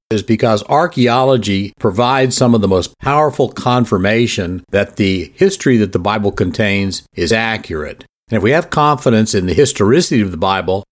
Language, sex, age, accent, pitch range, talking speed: English, male, 50-69, American, 100-130 Hz, 165 wpm